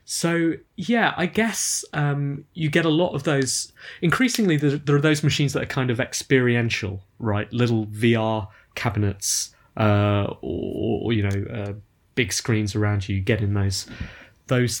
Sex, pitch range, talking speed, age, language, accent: male, 100-135 Hz, 160 wpm, 20-39, English, British